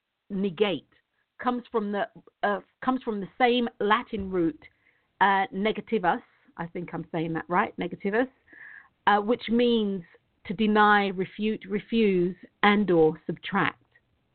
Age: 50-69